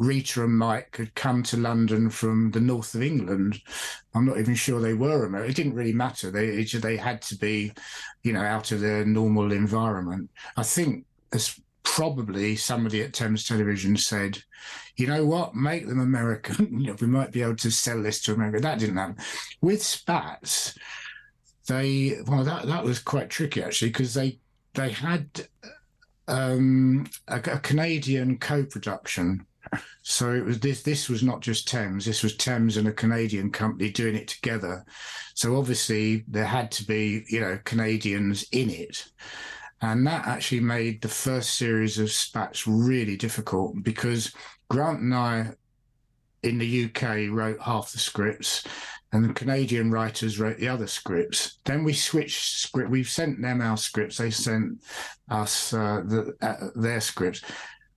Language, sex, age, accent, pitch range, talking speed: English, male, 50-69, British, 110-130 Hz, 165 wpm